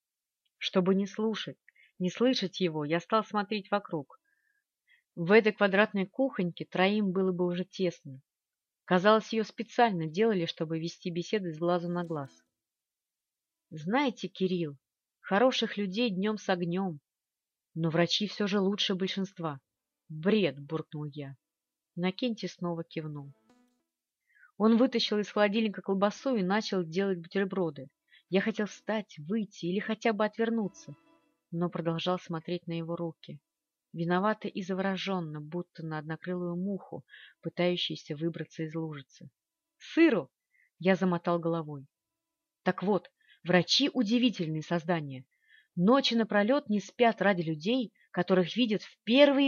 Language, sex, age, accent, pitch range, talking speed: Russian, female, 30-49, native, 165-215 Hz, 130 wpm